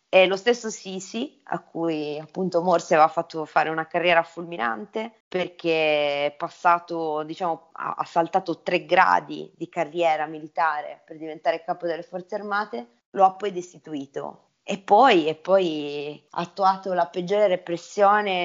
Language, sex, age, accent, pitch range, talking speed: Italian, female, 20-39, native, 155-180 Hz, 145 wpm